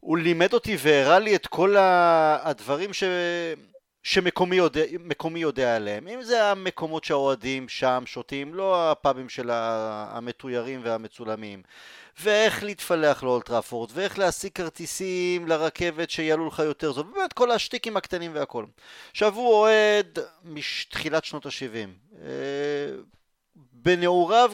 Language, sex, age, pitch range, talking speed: Hebrew, male, 30-49, 130-190 Hz, 115 wpm